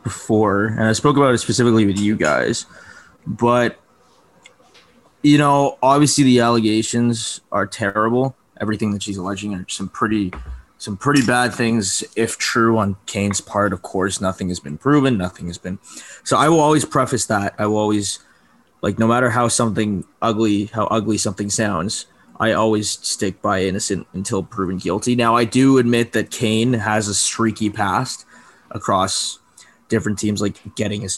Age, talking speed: 20-39, 165 wpm